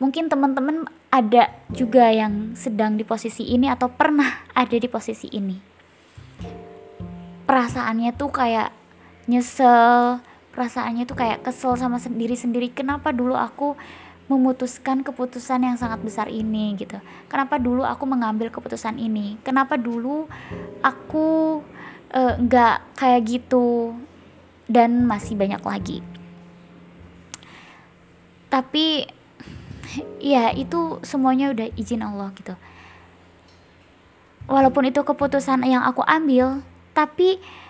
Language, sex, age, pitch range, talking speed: Indonesian, female, 20-39, 215-265 Hz, 105 wpm